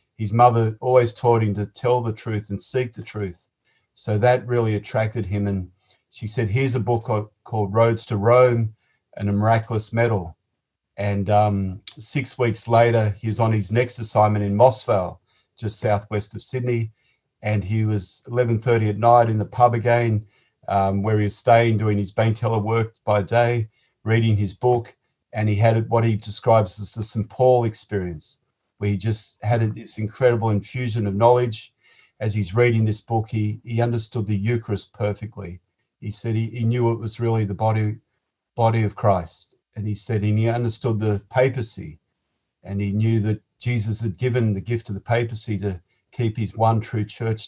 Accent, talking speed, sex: Australian, 180 wpm, male